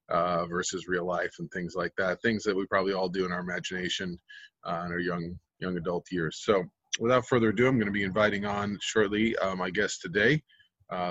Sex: male